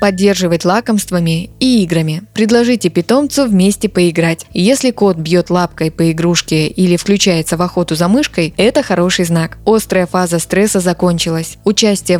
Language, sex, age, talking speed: Russian, female, 20-39, 140 wpm